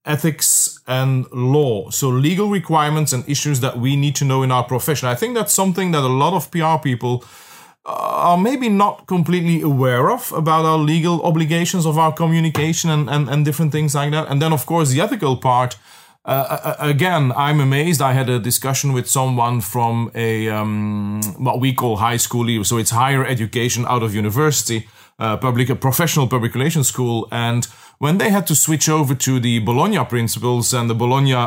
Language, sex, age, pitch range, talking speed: English, male, 30-49, 120-150 Hz, 190 wpm